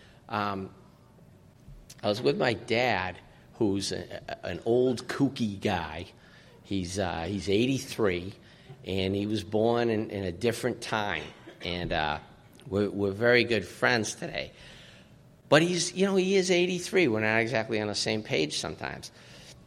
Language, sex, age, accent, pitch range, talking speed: English, male, 50-69, American, 105-150 Hz, 150 wpm